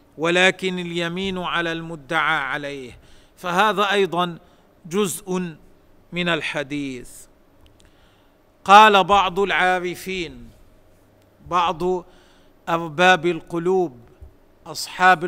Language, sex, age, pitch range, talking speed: Arabic, male, 50-69, 150-190 Hz, 65 wpm